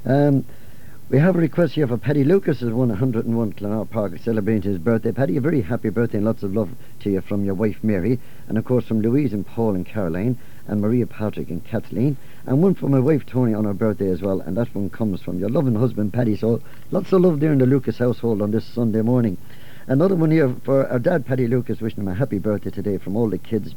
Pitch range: 110-140 Hz